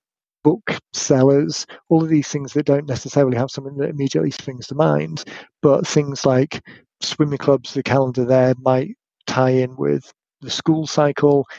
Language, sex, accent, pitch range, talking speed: English, male, British, 130-145 Hz, 160 wpm